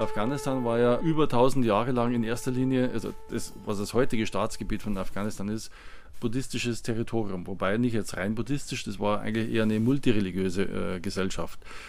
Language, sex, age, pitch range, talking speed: German, male, 20-39, 105-125 Hz, 170 wpm